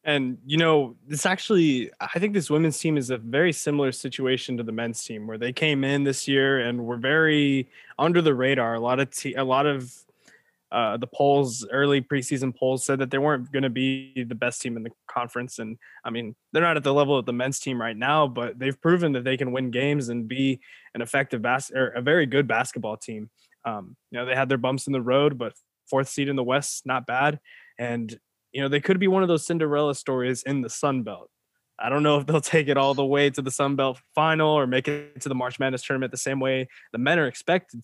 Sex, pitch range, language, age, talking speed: male, 120-145 Hz, English, 20-39, 245 wpm